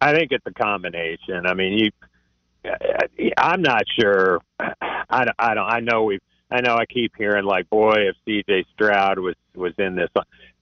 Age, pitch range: 50-69, 100-145 Hz